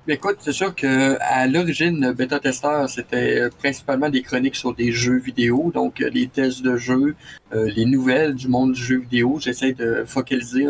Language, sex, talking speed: French, male, 180 wpm